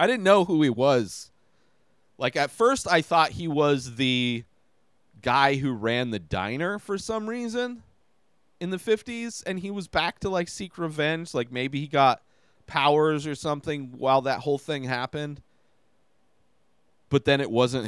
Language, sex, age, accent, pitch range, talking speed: English, male, 30-49, American, 115-160 Hz, 165 wpm